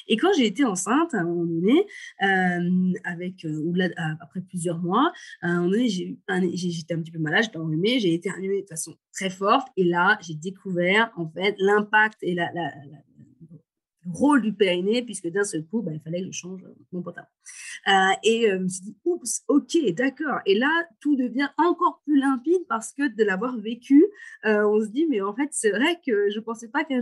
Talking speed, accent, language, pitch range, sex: 225 wpm, French, French, 180-255 Hz, female